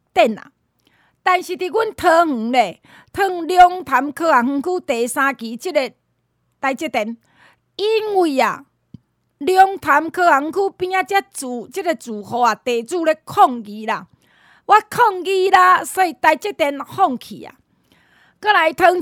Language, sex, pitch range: Chinese, female, 285-385 Hz